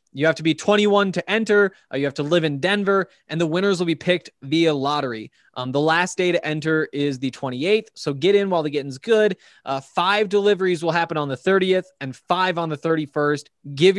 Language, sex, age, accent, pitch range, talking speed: English, male, 20-39, American, 140-185 Hz, 225 wpm